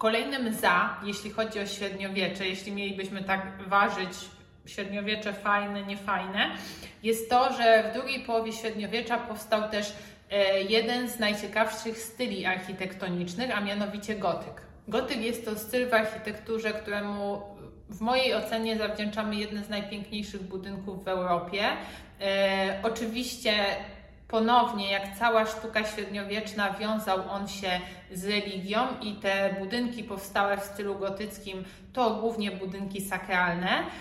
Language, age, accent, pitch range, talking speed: Polish, 20-39, native, 195-220 Hz, 120 wpm